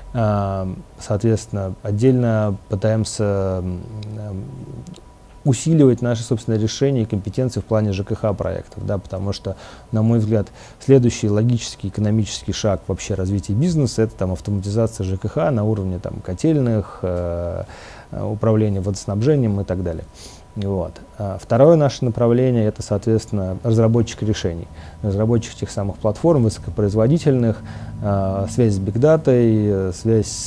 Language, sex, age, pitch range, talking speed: Russian, male, 30-49, 100-115 Hz, 115 wpm